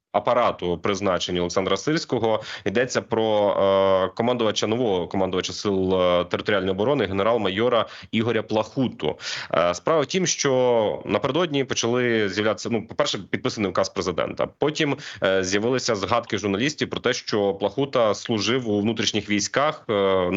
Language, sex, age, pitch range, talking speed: Ukrainian, male, 30-49, 105-130 Hz, 125 wpm